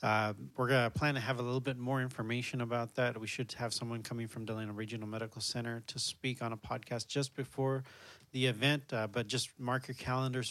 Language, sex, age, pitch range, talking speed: English, male, 30-49, 115-130 Hz, 215 wpm